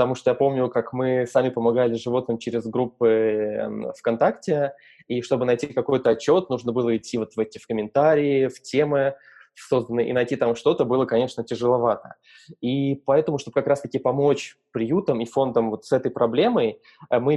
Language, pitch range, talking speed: Russian, 115-140 Hz, 160 wpm